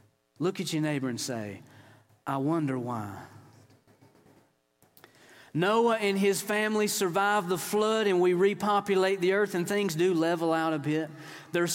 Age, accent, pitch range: 40-59, American, 155-215 Hz